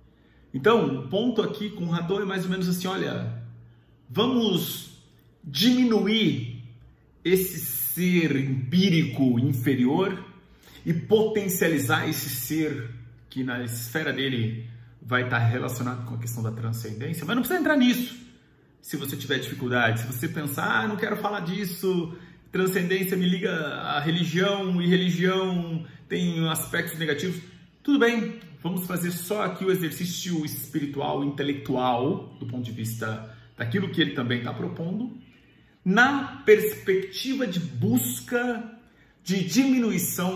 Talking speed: 130 wpm